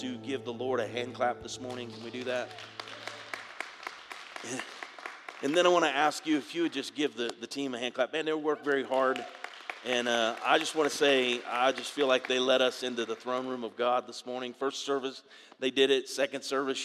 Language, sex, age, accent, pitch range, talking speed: English, male, 40-59, American, 125-145 Hz, 230 wpm